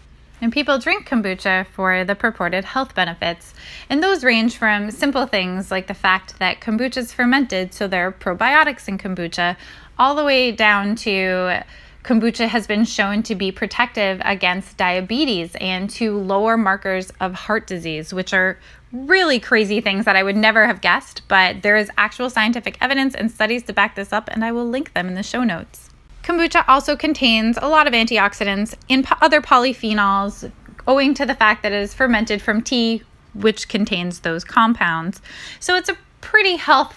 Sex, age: female, 20-39